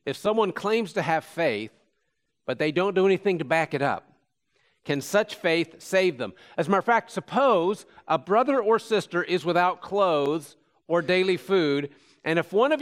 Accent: American